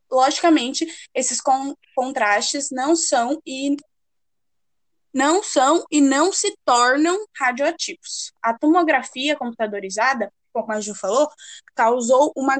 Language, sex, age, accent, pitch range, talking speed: Portuguese, female, 10-29, Brazilian, 240-320 Hz, 95 wpm